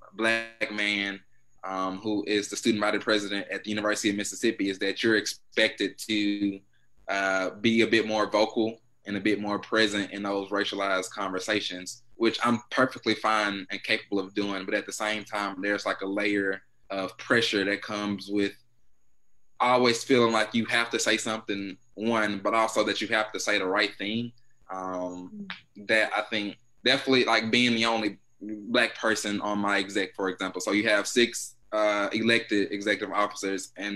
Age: 20-39